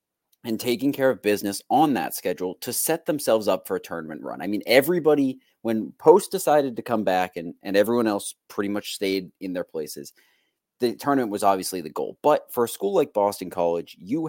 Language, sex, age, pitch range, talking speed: English, male, 30-49, 95-115 Hz, 205 wpm